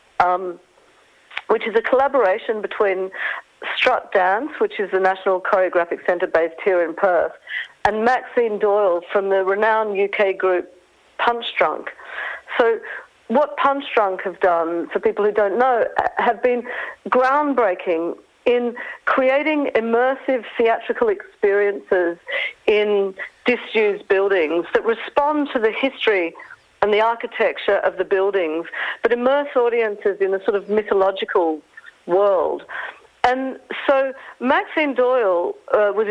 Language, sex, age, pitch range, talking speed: English, female, 50-69, 200-270 Hz, 125 wpm